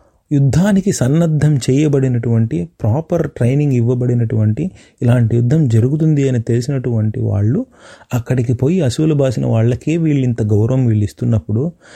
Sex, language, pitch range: male, Telugu, 115-140 Hz